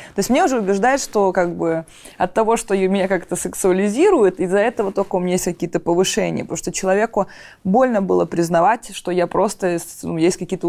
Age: 20-39